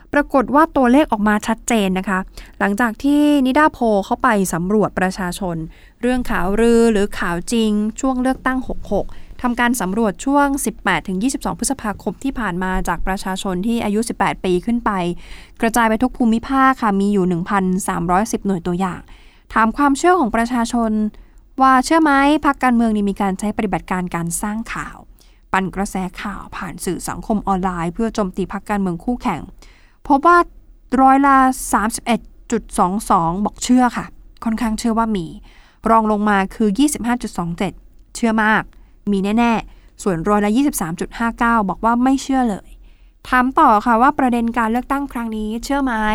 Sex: female